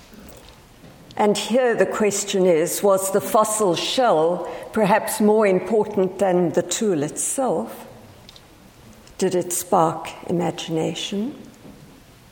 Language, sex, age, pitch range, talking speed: English, female, 60-79, 180-230 Hz, 95 wpm